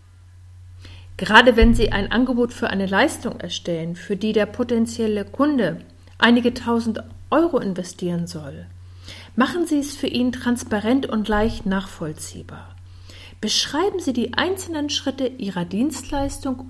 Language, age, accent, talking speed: German, 50-69, German, 125 wpm